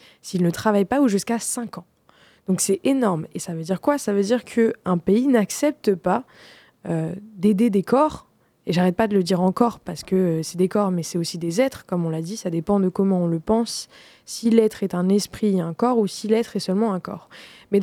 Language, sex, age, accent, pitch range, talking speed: French, female, 20-39, French, 185-225 Hz, 240 wpm